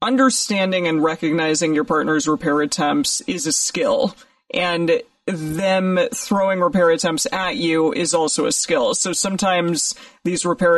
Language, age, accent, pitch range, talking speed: English, 30-49, American, 155-210 Hz, 140 wpm